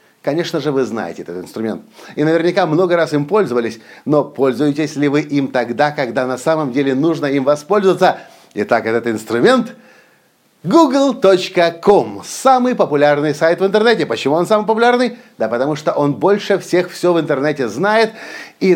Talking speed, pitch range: 155 wpm, 150-210 Hz